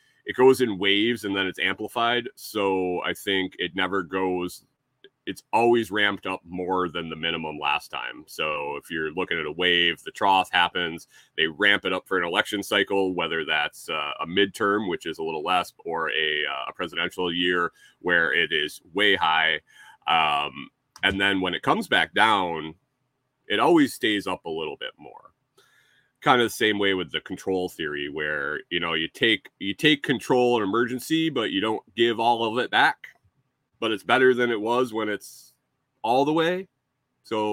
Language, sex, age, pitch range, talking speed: English, male, 30-49, 95-130 Hz, 190 wpm